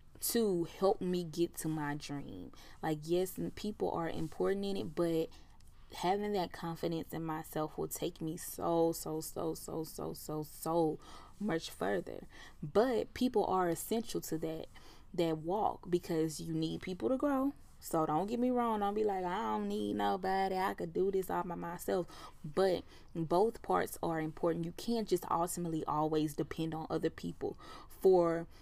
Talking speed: 170 wpm